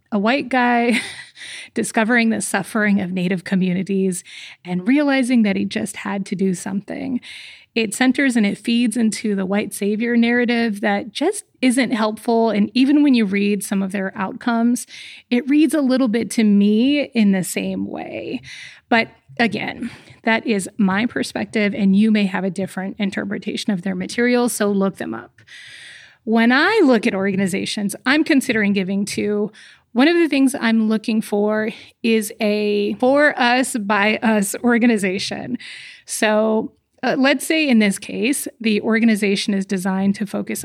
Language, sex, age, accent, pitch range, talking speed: English, female, 30-49, American, 200-250 Hz, 155 wpm